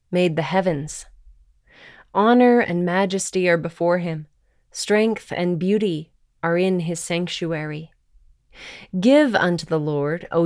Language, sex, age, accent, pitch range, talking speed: English, female, 20-39, American, 165-205 Hz, 120 wpm